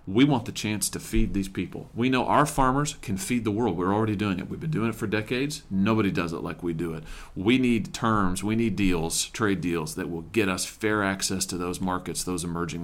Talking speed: 245 wpm